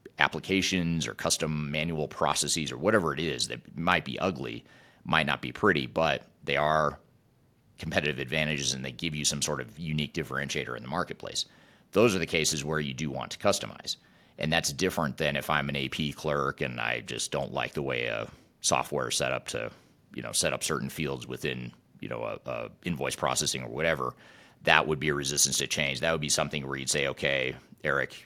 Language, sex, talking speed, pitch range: English, male, 200 wpm, 70-80 Hz